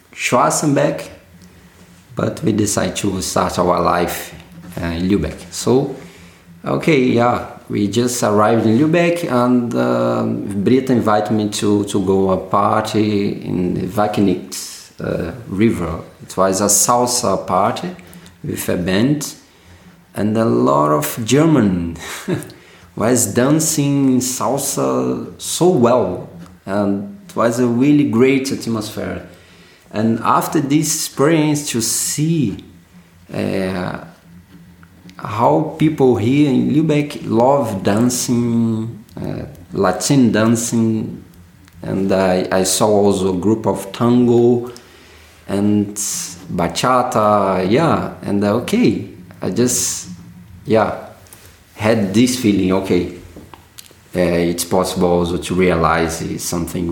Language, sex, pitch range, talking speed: German, male, 90-120 Hz, 110 wpm